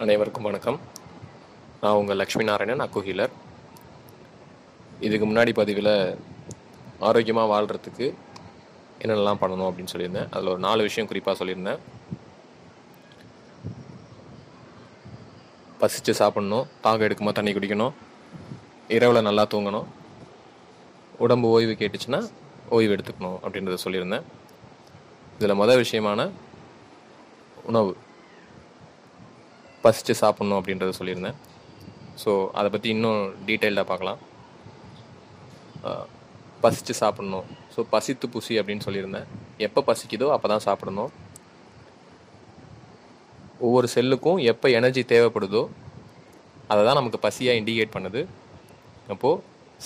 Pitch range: 105-115 Hz